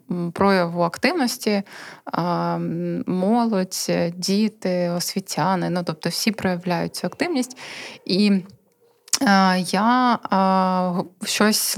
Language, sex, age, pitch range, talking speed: Ukrainian, female, 20-39, 185-220 Hz, 70 wpm